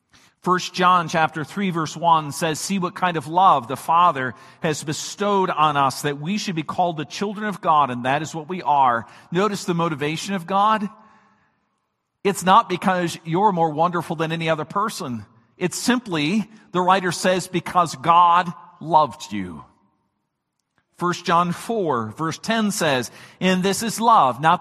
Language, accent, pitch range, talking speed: English, American, 160-205 Hz, 165 wpm